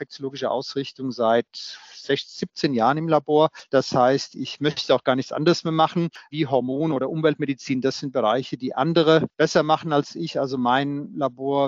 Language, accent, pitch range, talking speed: German, German, 130-160 Hz, 165 wpm